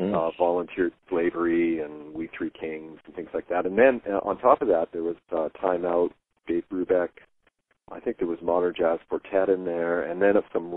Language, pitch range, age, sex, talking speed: English, 80-110 Hz, 40-59, male, 210 wpm